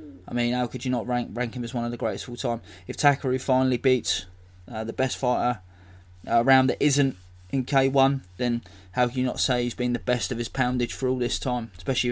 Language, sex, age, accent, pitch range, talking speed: English, male, 20-39, British, 95-125 Hz, 230 wpm